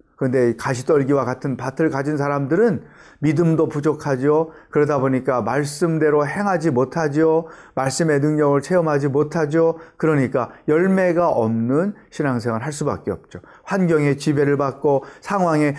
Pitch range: 130-165 Hz